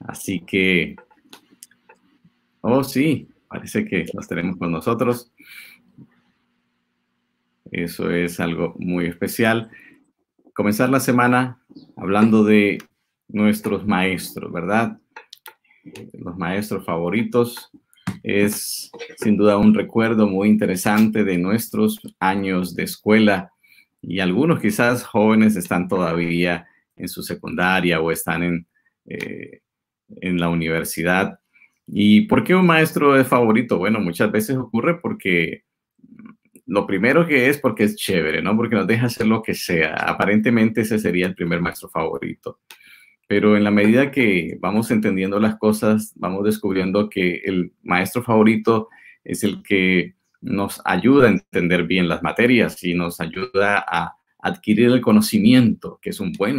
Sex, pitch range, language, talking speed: male, 90-120 Hz, Spanish, 130 wpm